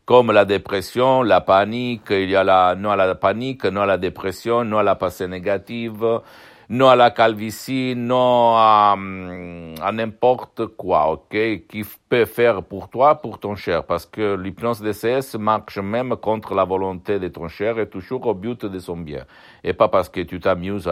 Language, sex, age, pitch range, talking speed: Italian, male, 60-79, 100-120 Hz, 190 wpm